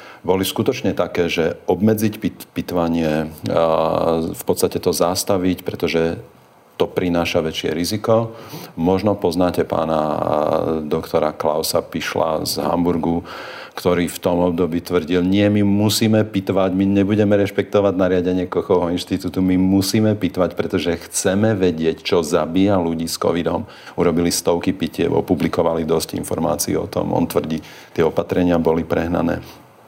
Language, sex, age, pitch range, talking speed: Slovak, male, 50-69, 85-100 Hz, 130 wpm